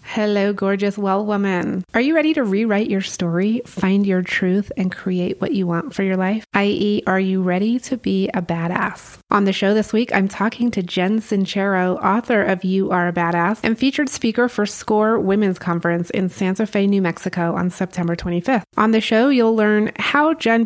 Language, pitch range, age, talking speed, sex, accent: English, 185-230 Hz, 30-49, 200 wpm, female, American